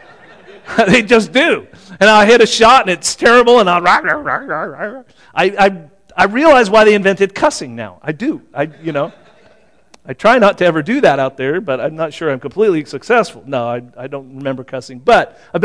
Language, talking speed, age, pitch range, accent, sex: English, 195 wpm, 40-59, 165-240 Hz, American, male